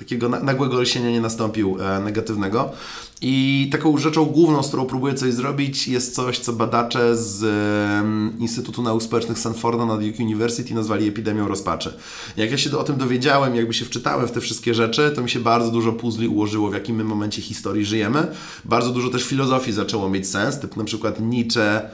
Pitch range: 105-125 Hz